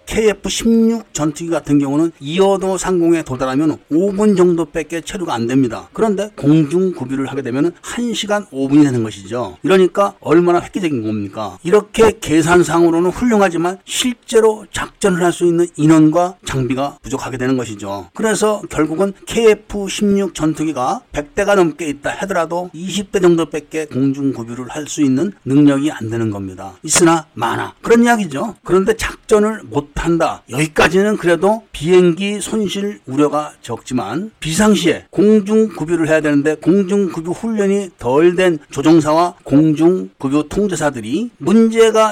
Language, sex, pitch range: Korean, male, 145-200 Hz